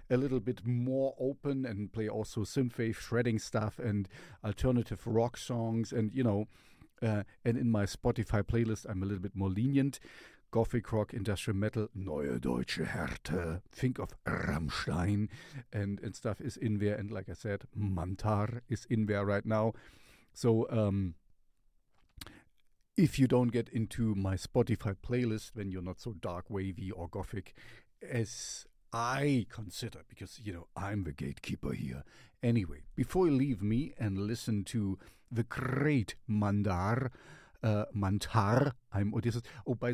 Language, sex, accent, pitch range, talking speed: English, male, German, 100-125 Hz, 150 wpm